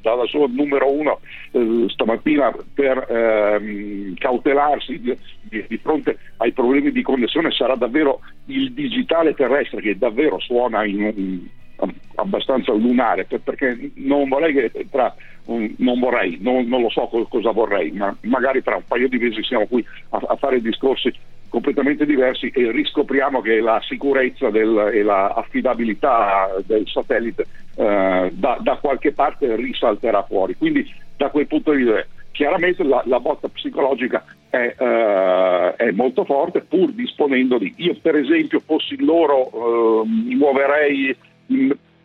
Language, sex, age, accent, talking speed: Italian, male, 50-69, native, 145 wpm